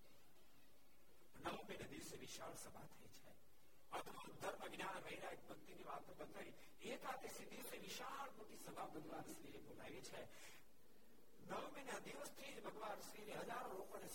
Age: 60-79